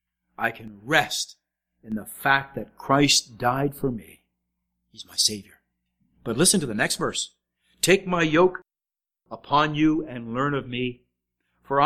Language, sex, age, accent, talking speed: English, male, 50-69, American, 150 wpm